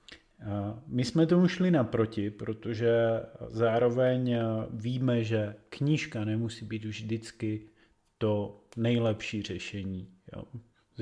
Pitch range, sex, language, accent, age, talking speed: 110-135 Hz, male, Czech, native, 30-49, 100 wpm